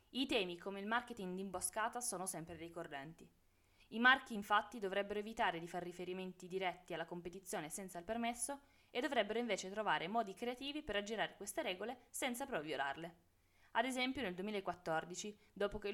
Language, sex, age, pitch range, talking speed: Italian, female, 20-39, 175-235 Hz, 155 wpm